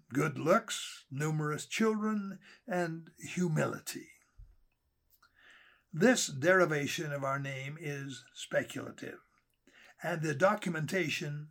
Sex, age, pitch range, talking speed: male, 60-79, 135-180 Hz, 85 wpm